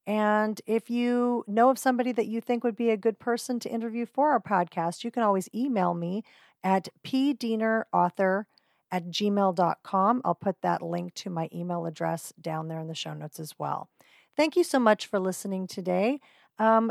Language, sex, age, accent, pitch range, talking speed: English, female, 40-59, American, 180-235 Hz, 185 wpm